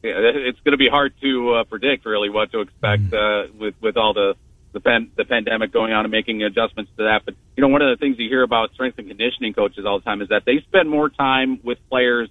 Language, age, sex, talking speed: English, 40-59, male, 255 wpm